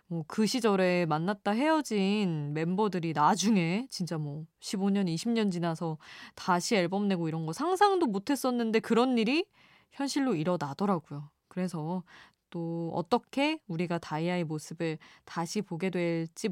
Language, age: Korean, 20-39